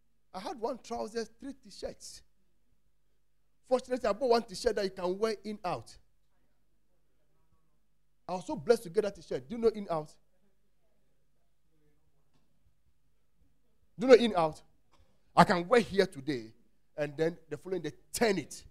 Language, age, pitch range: English, 40-59, 150-235 Hz